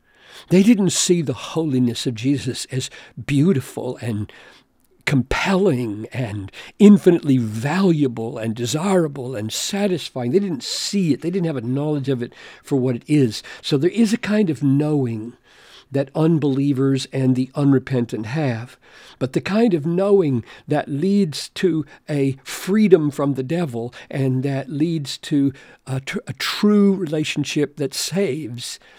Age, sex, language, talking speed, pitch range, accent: 50-69, male, English, 145 wpm, 125-165 Hz, American